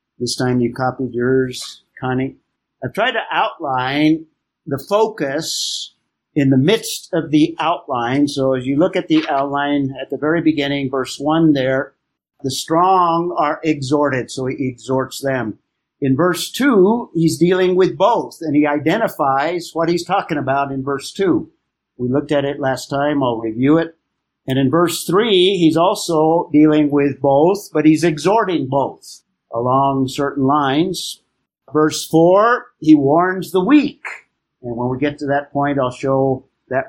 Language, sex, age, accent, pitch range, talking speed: English, male, 50-69, American, 135-165 Hz, 160 wpm